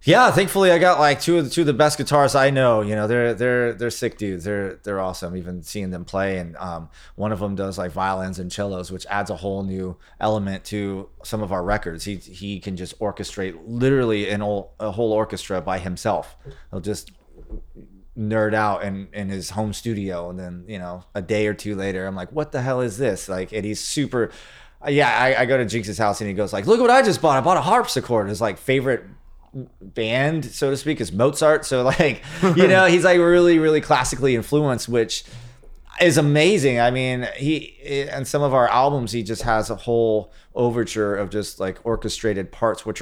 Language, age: English, 20-39